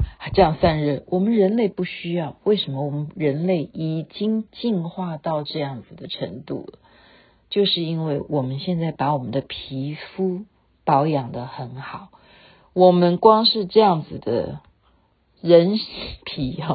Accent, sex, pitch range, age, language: native, female, 145-205 Hz, 50-69, Chinese